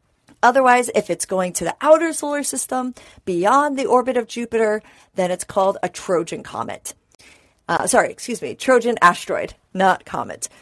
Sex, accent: female, American